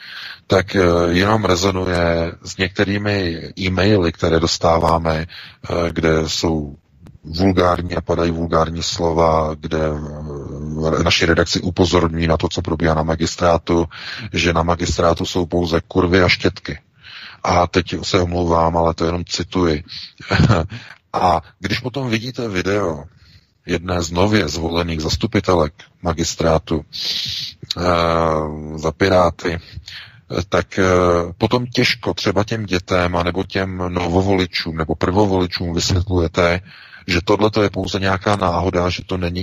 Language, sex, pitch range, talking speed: Czech, male, 85-100 Hz, 115 wpm